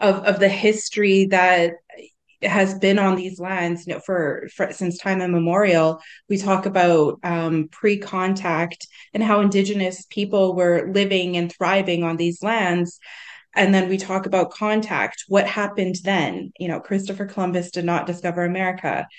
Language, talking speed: English, 155 wpm